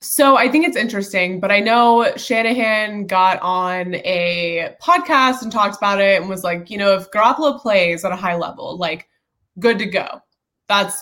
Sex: female